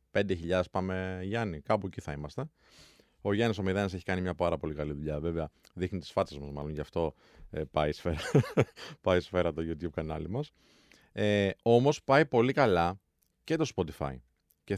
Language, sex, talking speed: Greek, male, 180 wpm